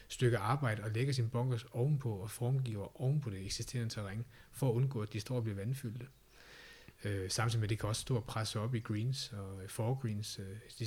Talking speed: 200 wpm